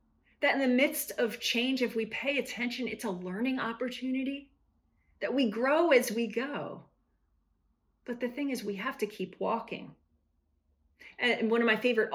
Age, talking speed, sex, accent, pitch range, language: 40-59, 170 wpm, female, American, 190-245 Hz, English